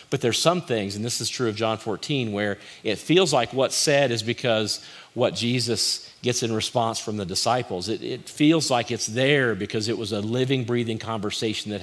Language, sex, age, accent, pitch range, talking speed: English, male, 50-69, American, 110-130 Hz, 210 wpm